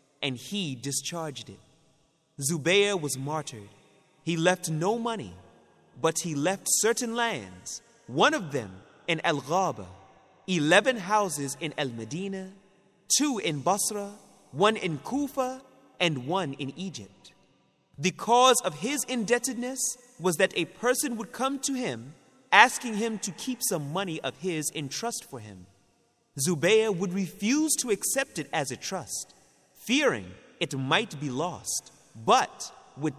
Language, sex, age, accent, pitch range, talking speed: English, male, 30-49, American, 155-215 Hz, 140 wpm